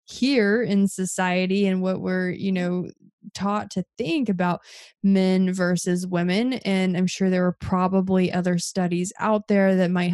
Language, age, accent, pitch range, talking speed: English, 20-39, American, 185-205 Hz, 160 wpm